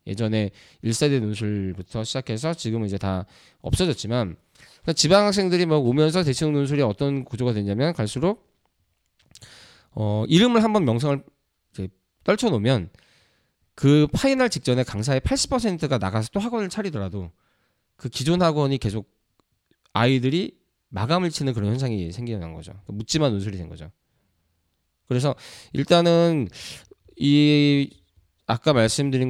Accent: native